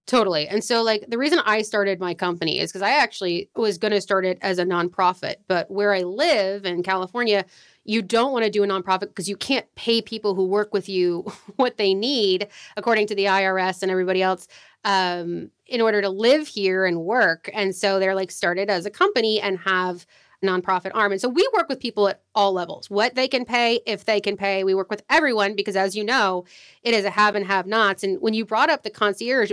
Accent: American